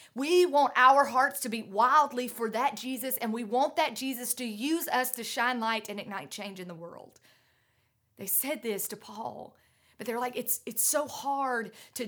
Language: English